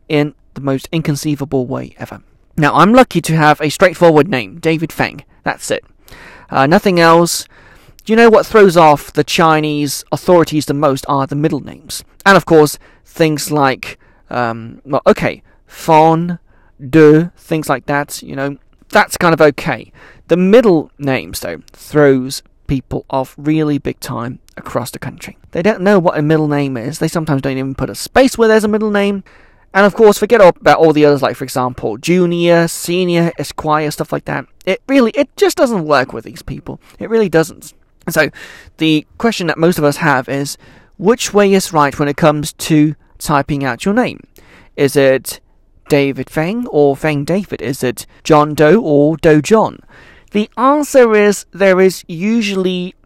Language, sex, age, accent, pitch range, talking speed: English, male, 30-49, British, 140-180 Hz, 180 wpm